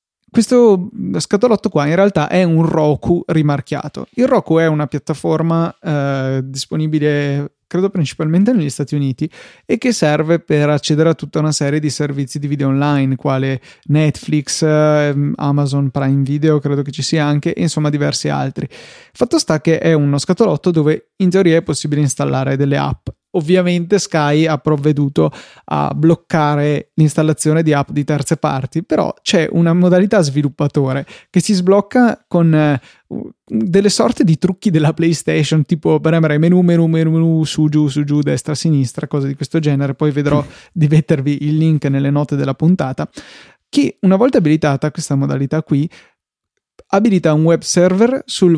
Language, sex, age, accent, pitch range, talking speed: Italian, male, 20-39, native, 145-165 Hz, 160 wpm